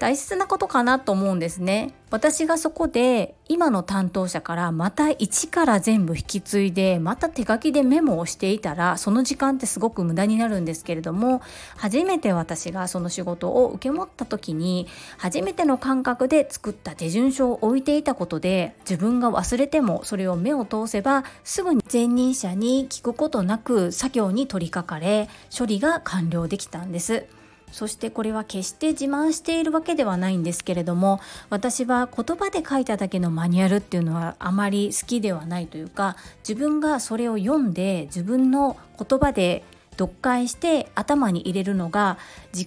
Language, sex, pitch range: Japanese, female, 185-265 Hz